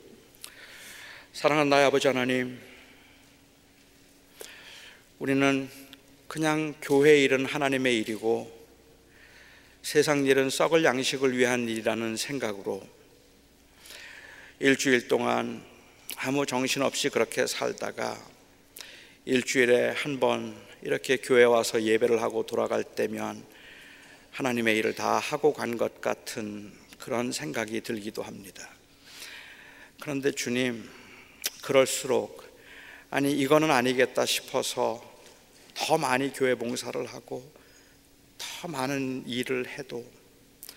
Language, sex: Korean, male